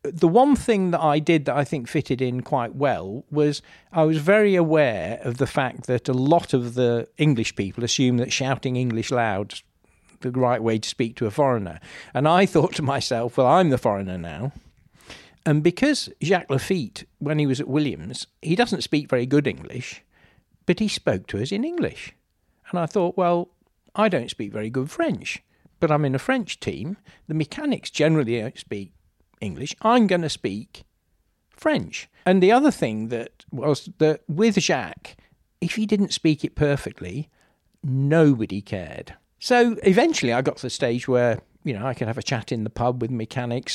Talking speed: 190 wpm